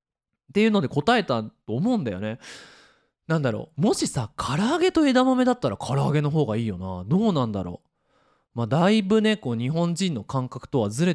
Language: Japanese